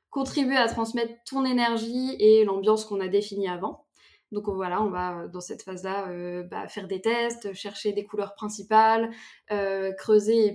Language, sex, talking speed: French, female, 165 wpm